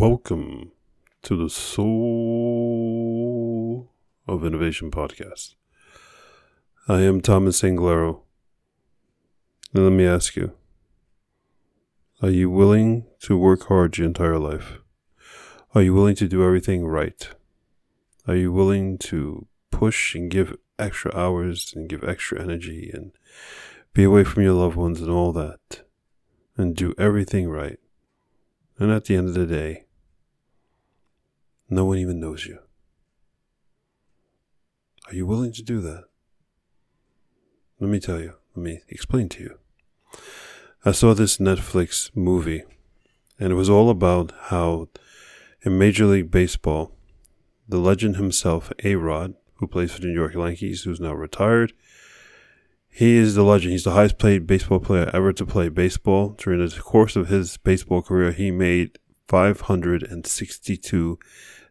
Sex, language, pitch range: male, English, 85-100 Hz